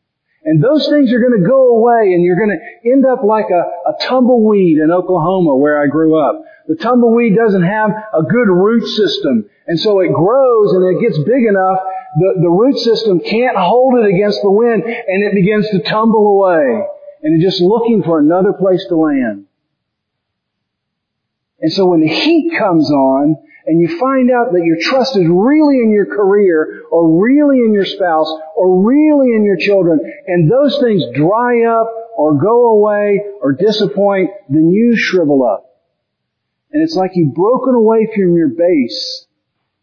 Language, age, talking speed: English, 50-69, 180 wpm